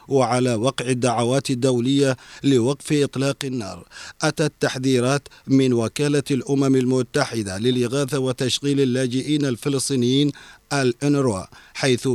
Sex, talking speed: male, 95 wpm